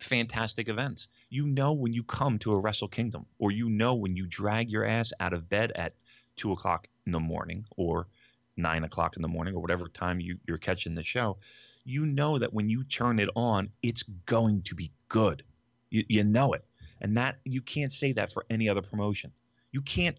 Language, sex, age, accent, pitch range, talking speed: English, male, 30-49, American, 95-140 Hz, 210 wpm